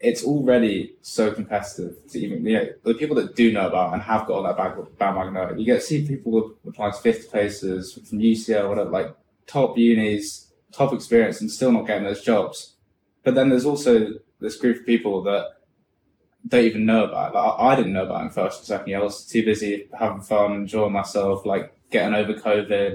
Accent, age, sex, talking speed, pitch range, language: British, 10-29, male, 205 wpm, 100-120 Hz, English